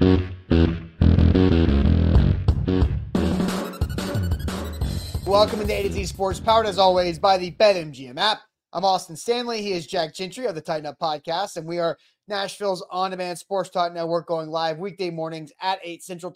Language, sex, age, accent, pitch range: English, male, 30-49, American, 160-195 Hz